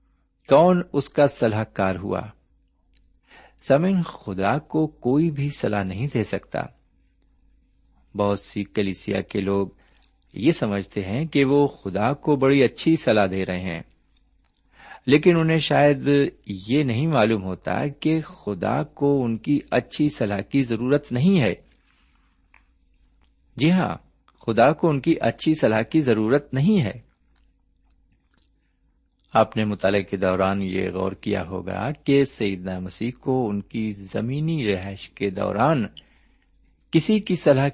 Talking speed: 130 wpm